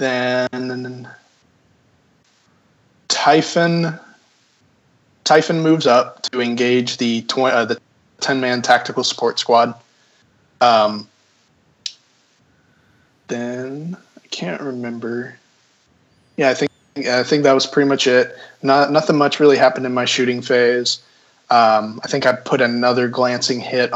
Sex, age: male, 20-39